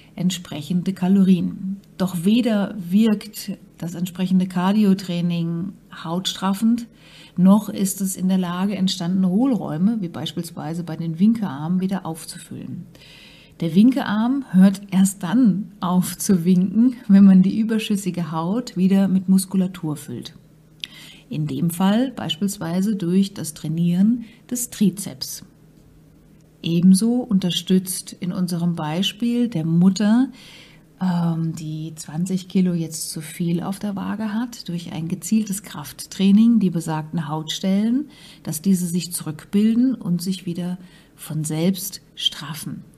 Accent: German